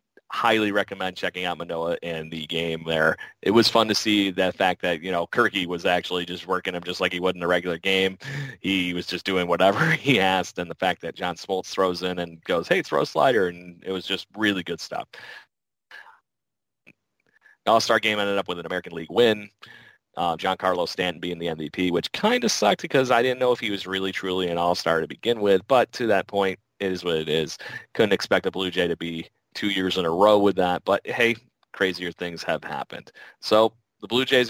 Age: 30-49